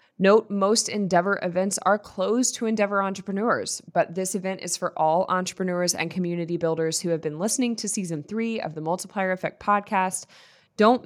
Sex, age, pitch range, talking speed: female, 20-39, 165-200 Hz, 175 wpm